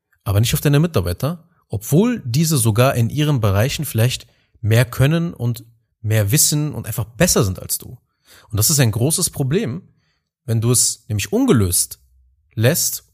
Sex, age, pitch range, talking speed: male, 30-49, 100-135 Hz, 160 wpm